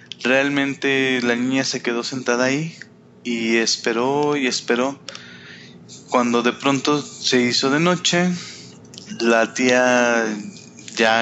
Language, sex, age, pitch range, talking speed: Spanish, male, 20-39, 115-135 Hz, 110 wpm